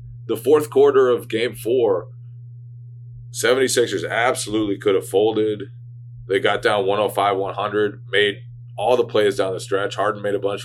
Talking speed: 145 wpm